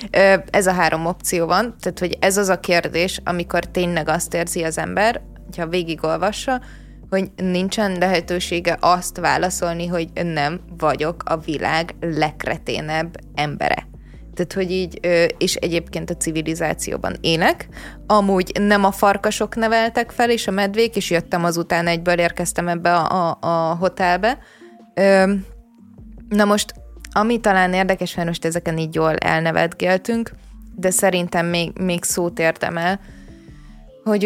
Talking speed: 135 wpm